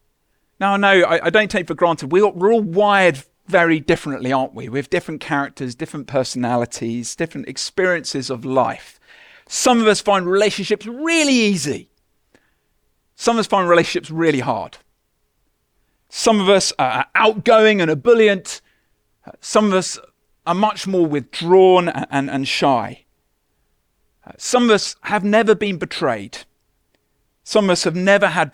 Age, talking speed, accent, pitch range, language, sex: 50-69, 155 wpm, British, 135-190 Hz, English, male